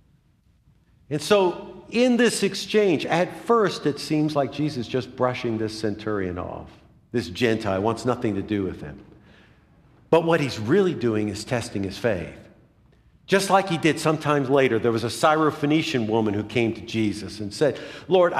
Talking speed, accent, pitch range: 170 wpm, American, 115-165 Hz